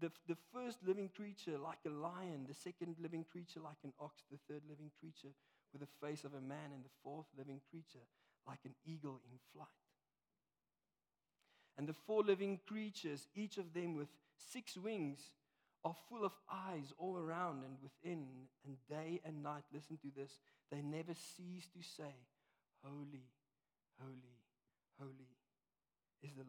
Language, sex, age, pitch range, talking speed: English, male, 50-69, 140-175 Hz, 160 wpm